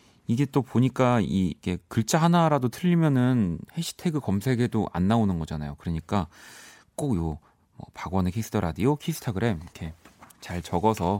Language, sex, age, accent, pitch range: Korean, male, 30-49, native, 90-140 Hz